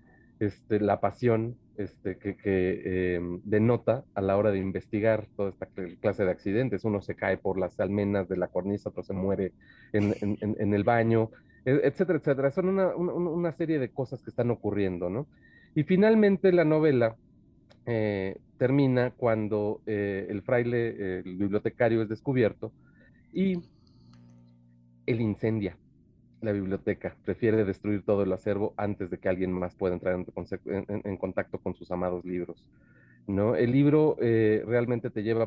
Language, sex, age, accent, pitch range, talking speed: Spanish, male, 40-59, Mexican, 95-120 Hz, 155 wpm